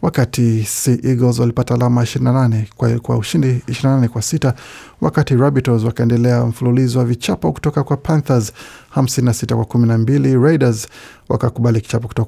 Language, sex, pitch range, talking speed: Swahili, male, 115-135 Hz, 135 wpm